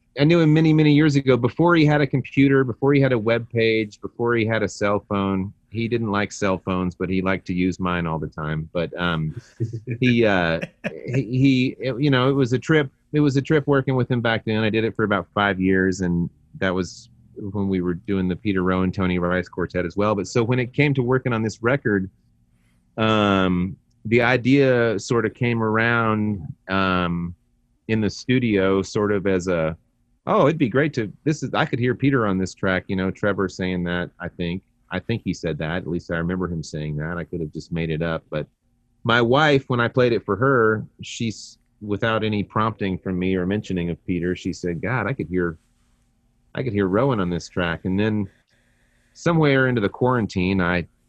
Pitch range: 90-120 Hz